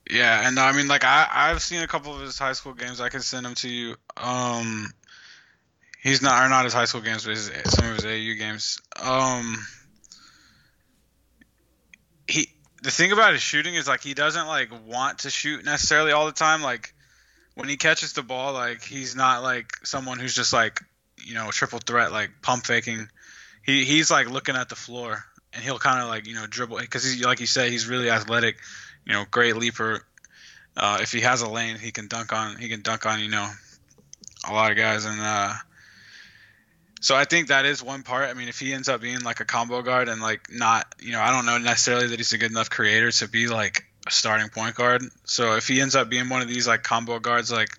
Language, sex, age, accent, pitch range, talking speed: English, male, 10-29, American, 110-130 Hz, 225 wpm